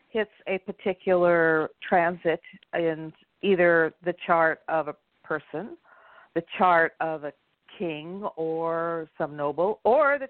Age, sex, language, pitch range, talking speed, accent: 50-69, female, English, 155-195 Hz, 120 wpm, American